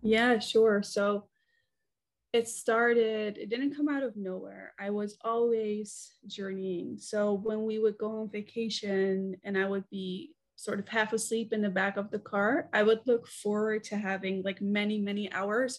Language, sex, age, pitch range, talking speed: English, female, 20-39, 195-230 Hz, 175 wpm